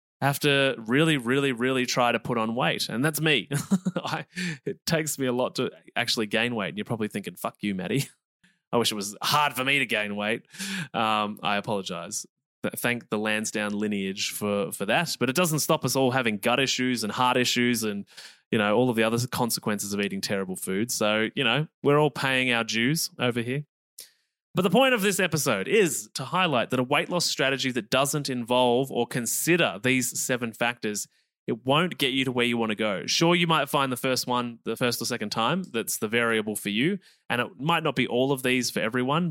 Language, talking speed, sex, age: English, 220 wpm, male, 20-39